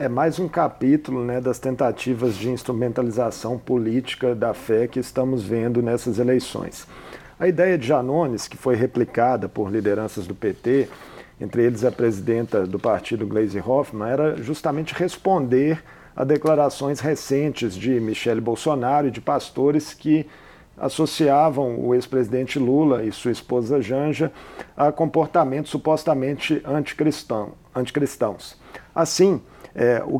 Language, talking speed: Portuguese, 125 wpm